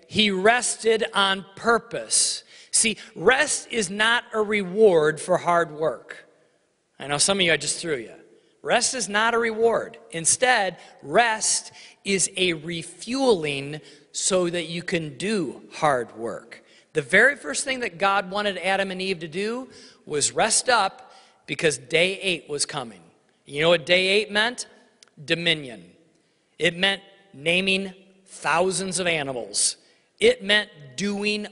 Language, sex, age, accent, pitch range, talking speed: English, male, 40-59, American, 175-235 Hz, 145 wpm